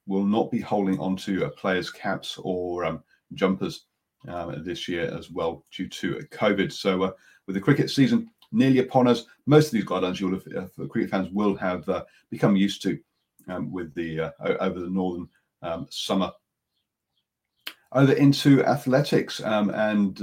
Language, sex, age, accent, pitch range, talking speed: English, male, 40-59, British, 95-125 Hz, 170 wpm